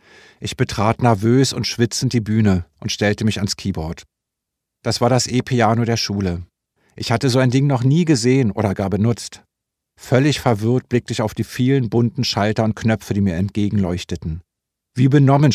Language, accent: German, German